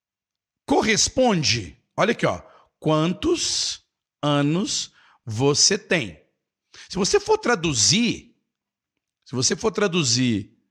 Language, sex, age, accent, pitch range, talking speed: Portuguese, male, 50-69, Brazilian, 130-195 Hz, 85 wpm